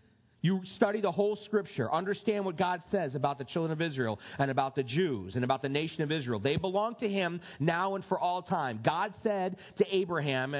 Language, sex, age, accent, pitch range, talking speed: English, male, 40-59, American, 160-225 Hz, 210 wpm